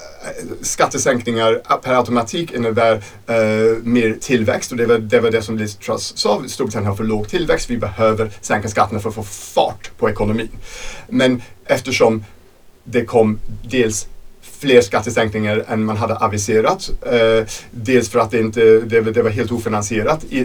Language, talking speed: English, 150 wpm